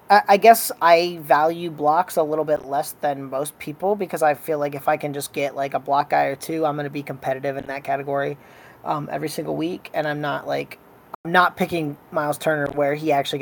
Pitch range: 135-160 Hz